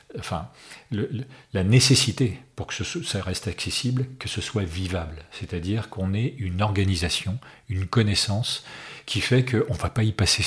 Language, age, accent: French, 40-59, French